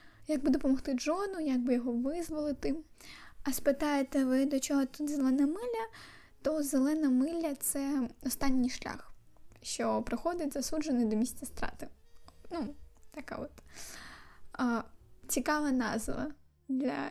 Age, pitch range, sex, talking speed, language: 10-29, 255-310 Hz, female, 125 wpm, Ukrainian